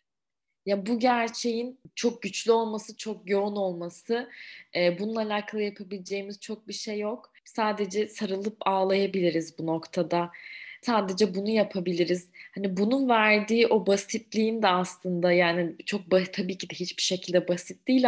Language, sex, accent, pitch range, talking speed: Turkish, female, native, 180-220 Hz, 135 wpm